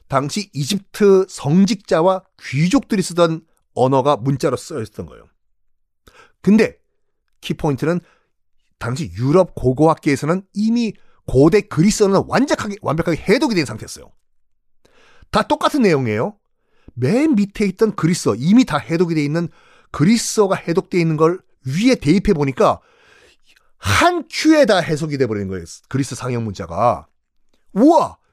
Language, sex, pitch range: Korean, male, 145-215 Hz